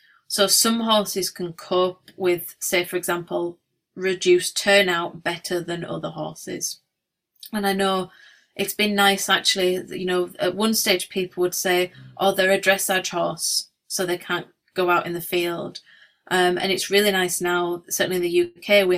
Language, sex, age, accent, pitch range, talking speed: Danish, female, 30-49, British, 175-195 Hz, 170 wpm